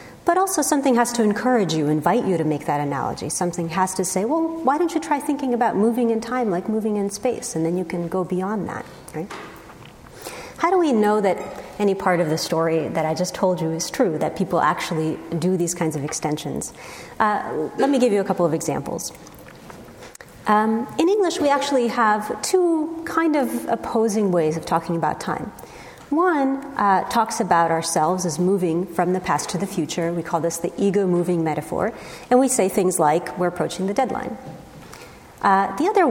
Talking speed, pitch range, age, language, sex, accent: 195 wpm, 170-245 Hz, 40-59, English, female, American